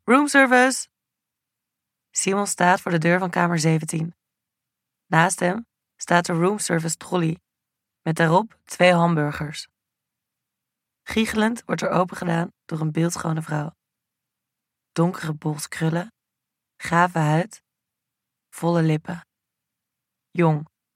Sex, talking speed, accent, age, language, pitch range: female, 100 wpm, Dutch, 20-39, Dutch, 160-185 Hz